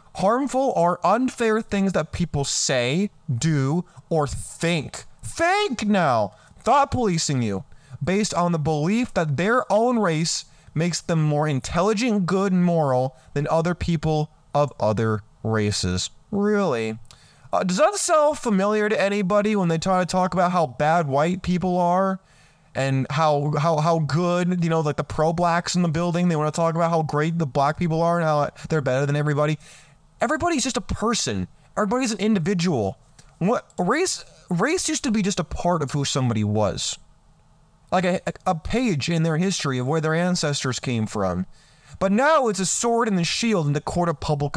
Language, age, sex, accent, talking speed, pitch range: English, 20-39, male, American, 175 wpm, 150-195 Hz